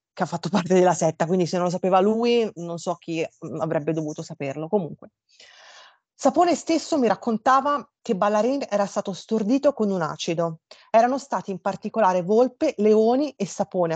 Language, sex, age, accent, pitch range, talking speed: Italian, female, 30-49, native, 165-220 Hz, 170 wpm